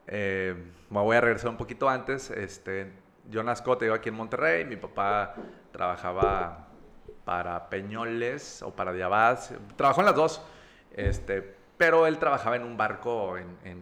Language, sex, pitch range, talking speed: English, male, 95-125 Hz, 150 wpm